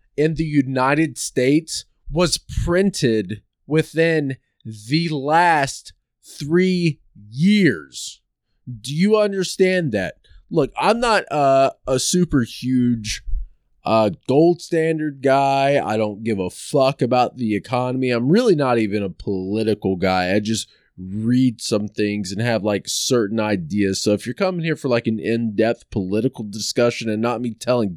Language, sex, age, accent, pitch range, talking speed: English, male, 20-39, American, 110-155 Hz, 140 wpm